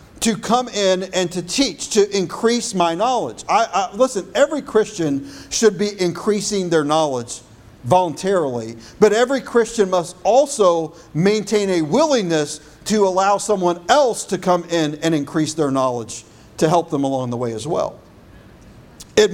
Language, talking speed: English, 150 wpm